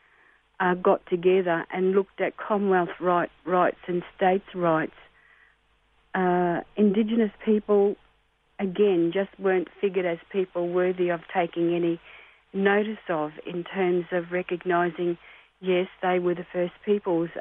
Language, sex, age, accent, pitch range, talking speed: English, female, 50-69, Australian, 170-190 Hz, 125 wpm